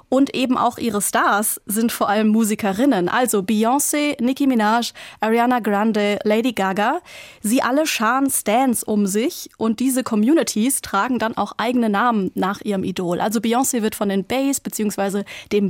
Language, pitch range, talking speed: German, 210-255 Hz, 160 wpm